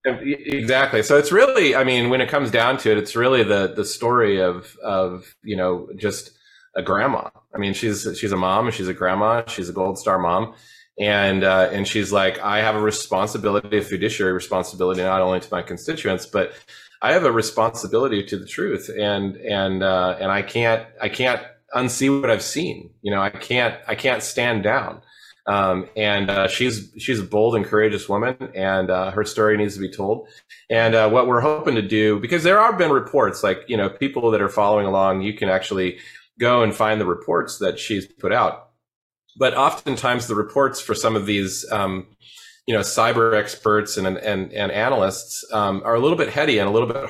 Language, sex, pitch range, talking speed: English, male, 95-115 Hz, 205 wpm